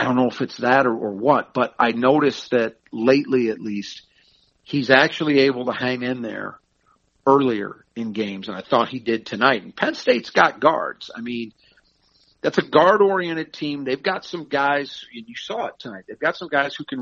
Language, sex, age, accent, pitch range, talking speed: English, male, 50-69, American, 115-145 Hz, 210 wpm